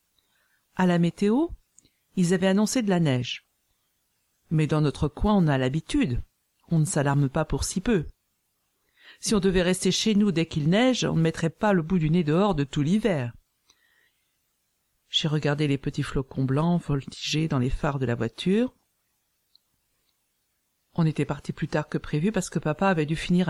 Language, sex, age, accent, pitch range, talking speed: French, female, 50-69, French, 150-190 Hz, 180 wpm